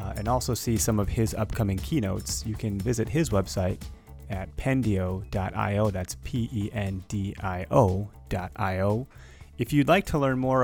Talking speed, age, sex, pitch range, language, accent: 135 wpm, 30-49, male, 100-125 Hz, English, American